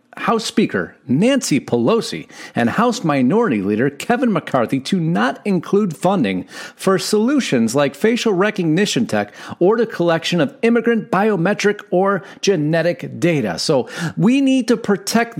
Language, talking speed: English, 135 wpm